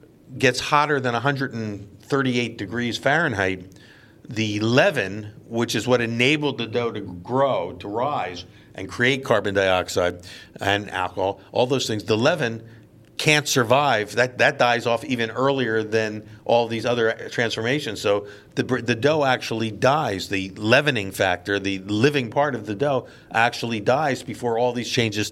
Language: English